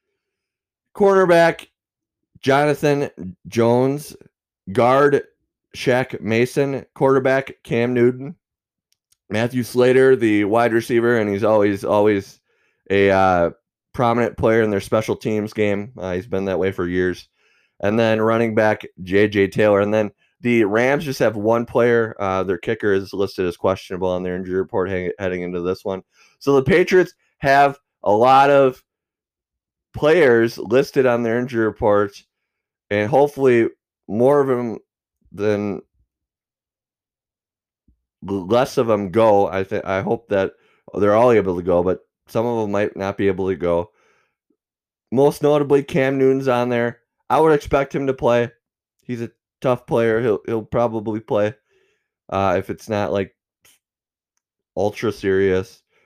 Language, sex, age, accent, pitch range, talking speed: English, male, 20-39, American, 100-130 Hz, 140 wpm